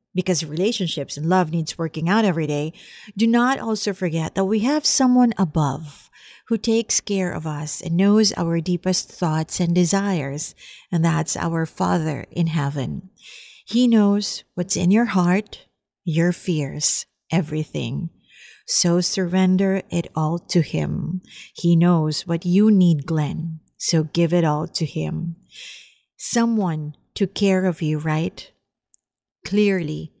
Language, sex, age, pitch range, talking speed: English, female, 50-69, 160-200 Hz, 140 wpm